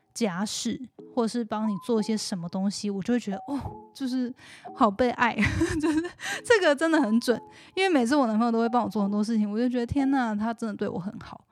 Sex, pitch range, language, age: female, 215-260 Hz, Chinese, 10-29